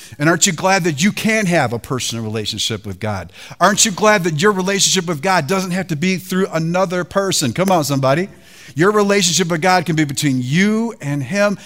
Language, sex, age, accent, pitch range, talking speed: English, male, 50-69, American, 130-185 Hz, 210 wpm